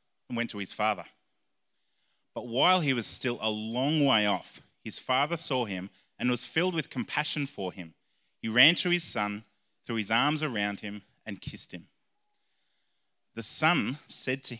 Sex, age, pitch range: male, 30-49, 105-150 Hz